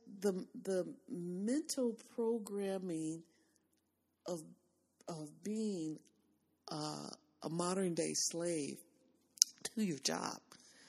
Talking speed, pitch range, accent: 75 wpm, 160-215 Hz, American